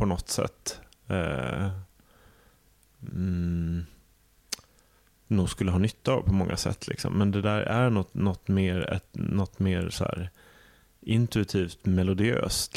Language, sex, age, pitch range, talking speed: Swedish, male, 30-49, 95-105 Hz, 130 wpm